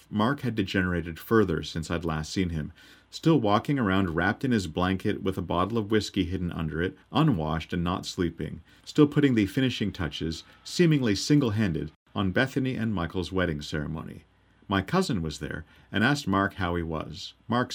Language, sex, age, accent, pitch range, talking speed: English, male, 40-59, American, 85-110 Hz, 175 wpm